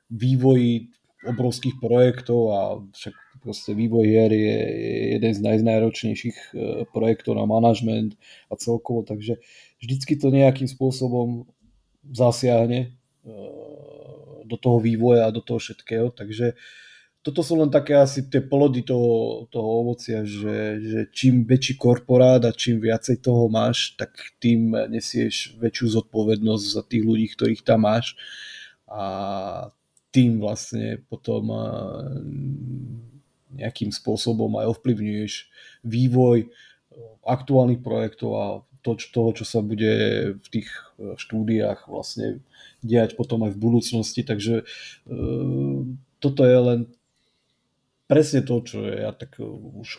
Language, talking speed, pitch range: Slovak, 120 wpm, 110-125 Hz